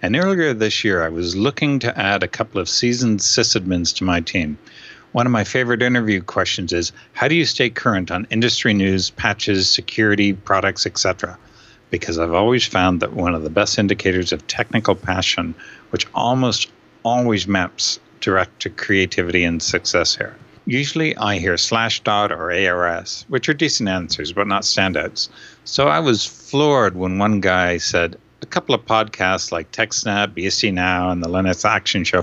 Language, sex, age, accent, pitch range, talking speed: English, male, 60-79, American, 90-115 Hz, 175 wpm